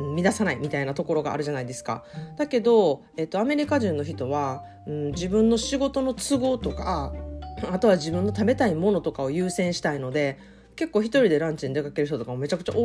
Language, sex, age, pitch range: Japanese, female, 40-59, 140-215 Hz